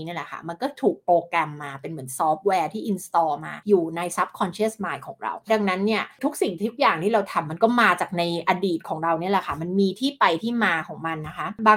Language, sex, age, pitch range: Thai, female, 20-39, 180-235 Hz